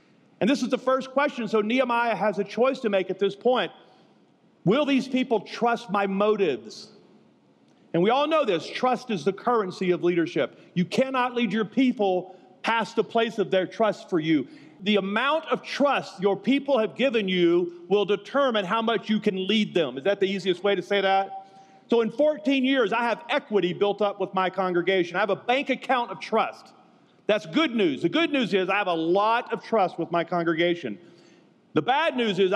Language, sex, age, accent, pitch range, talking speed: English, male, 40-59, American, 180-230 Hz, 205 wpm